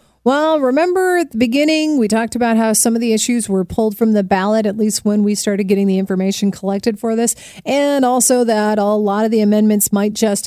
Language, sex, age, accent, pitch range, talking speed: English, female, 40-59, American, 195-255 Hz, 225 wpm